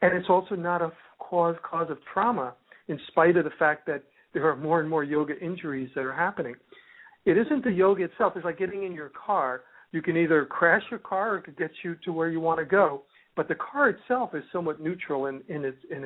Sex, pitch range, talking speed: male, 145-180 Hz, 240 wpm